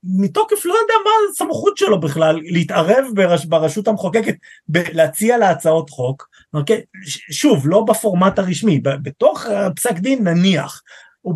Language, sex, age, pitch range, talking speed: Hebrew, male, 30-49, 150-215 Hz, 145 wpm